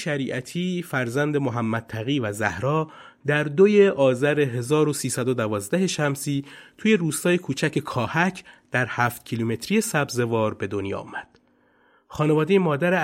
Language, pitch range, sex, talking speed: Persian, 115-155 Hz, male, 110 wpm